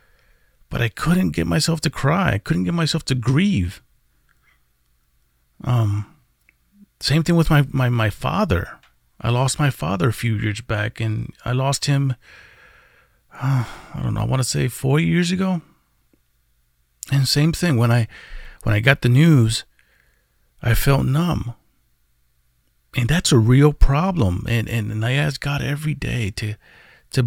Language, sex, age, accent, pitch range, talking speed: English, male, 40-59, American, 105-145 Hz, 160 wpm